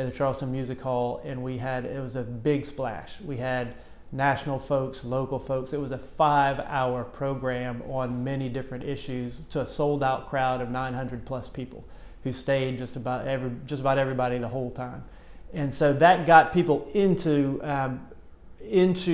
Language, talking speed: English, 170 wpm